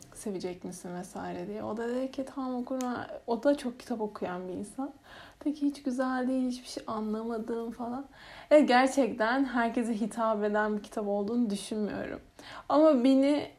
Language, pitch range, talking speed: Turkish, 200-255 Hz, 160 wpm